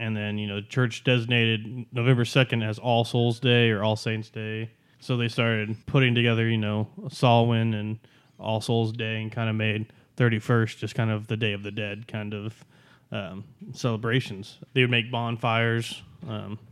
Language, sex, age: English, male, 20-39